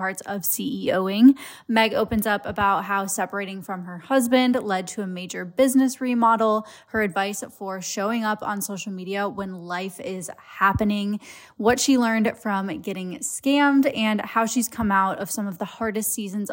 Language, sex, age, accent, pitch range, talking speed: English, female, 10-29, American, 195-235 Hz, 170 wpm